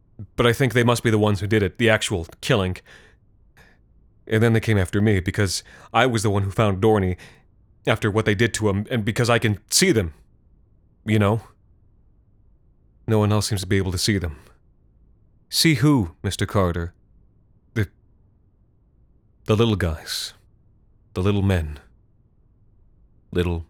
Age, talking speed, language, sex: 30-49, 160 wpm, English, male